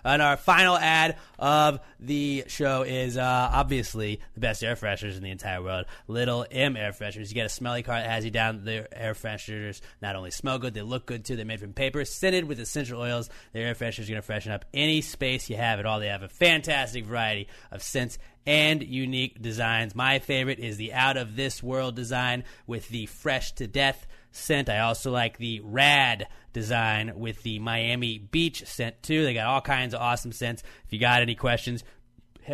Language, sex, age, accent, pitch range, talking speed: English, male, 30-49, American, 115-145 Hz, 200 wpm